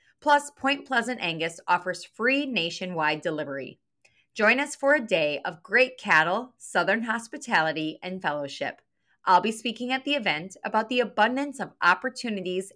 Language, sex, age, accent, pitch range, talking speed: English, female, 30-49, American, 170-250 Hz, 145 wpm